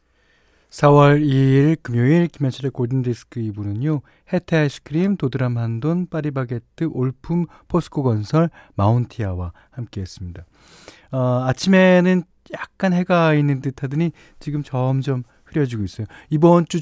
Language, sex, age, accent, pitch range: Korean, male, 40-59, native, 115-160 Hz